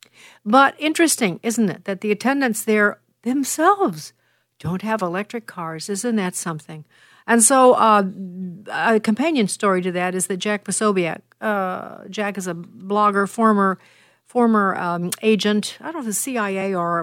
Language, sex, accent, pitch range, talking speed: English, female, American, 180-215 Hz, 150 wpm